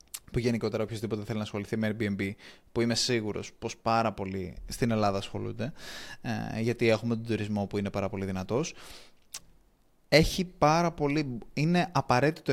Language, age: Greek, 20-39